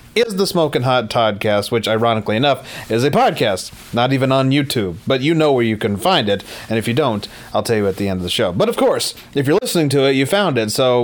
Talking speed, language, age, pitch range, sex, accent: 260 wpm, English, 30-49, 115-150 Hz, male, American